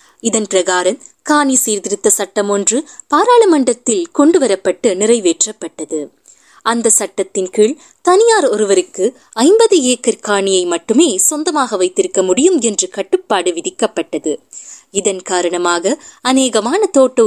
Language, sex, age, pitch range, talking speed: Tamil, female, 20-39, 185-300 Hz, 95 wpm